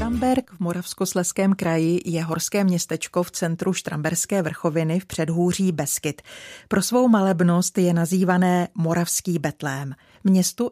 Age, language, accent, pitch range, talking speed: 40-59, Czech, native, 165-195 Hz, 125 wpm